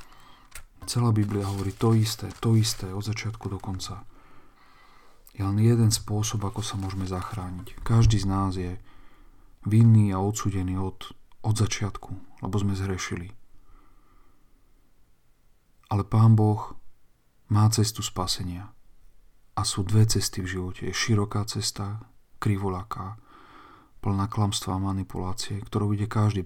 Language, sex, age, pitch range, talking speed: Slovak, male, 40-59, 95-110 Hz, 125 wpm